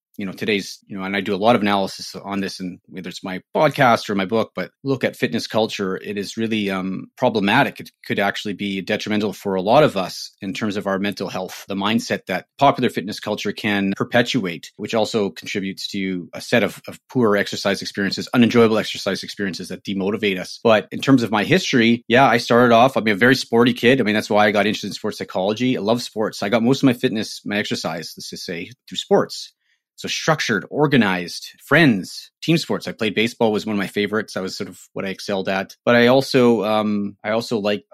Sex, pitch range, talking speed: male, 100-115 Hz, 225 wpm